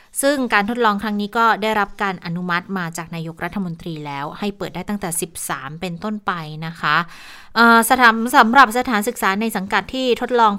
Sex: female